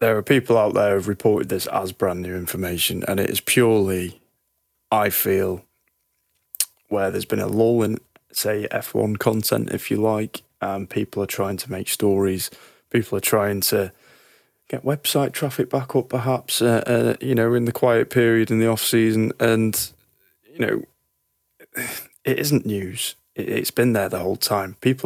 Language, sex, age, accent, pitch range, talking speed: English, male, 20-39, British, 100-125 Hz, 170 wpm